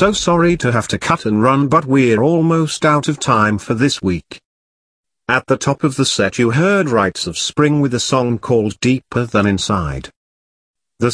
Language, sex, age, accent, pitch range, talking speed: English, male, 50-69, British, 105-145 Hz, 195 wpm